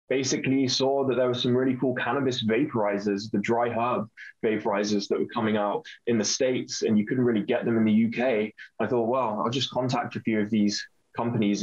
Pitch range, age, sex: 110-125 Hz, 10-29, male